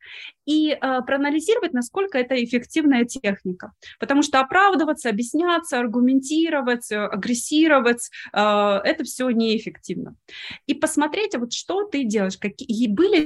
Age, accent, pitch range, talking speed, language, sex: 20-39, native, 200-275 Hz, 120 wpm, Russian, female